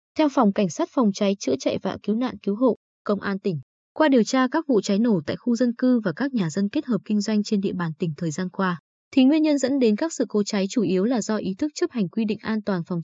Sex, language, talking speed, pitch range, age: female, Vietnamese, 295 wpm, 190-250 Hz, 20-39